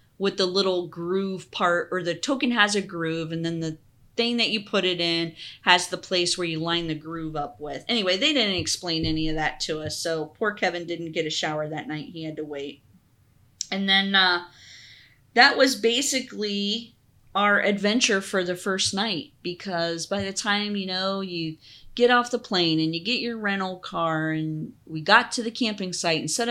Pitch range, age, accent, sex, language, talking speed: 155-205 Hz, 30-49, American, female, English, 205 wpm